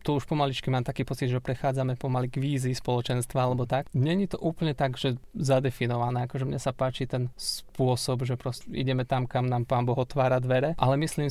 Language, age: Slovak, 20-39